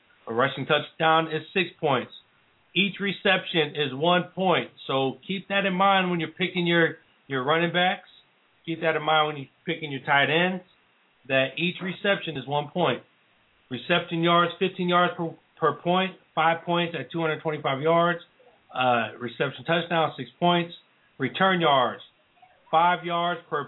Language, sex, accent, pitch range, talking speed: English, male, American, 135-175 Hz, 155 wpm